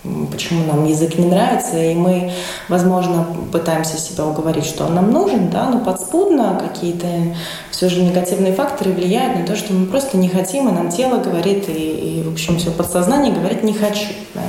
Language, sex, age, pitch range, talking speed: Russian, female, 20-39, 170-200 Hz, 185 wpm